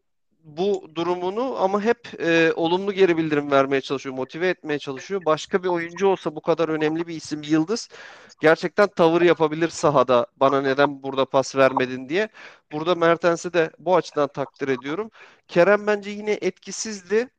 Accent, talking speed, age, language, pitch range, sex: native, 150 wpm, 40-59, Turkish, 160-205 Hz, male